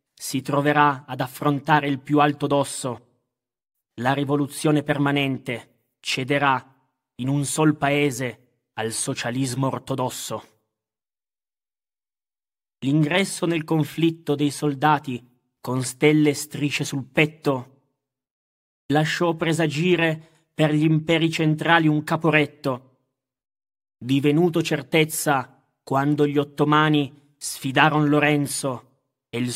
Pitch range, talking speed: 135-155 Hz, 95 wpm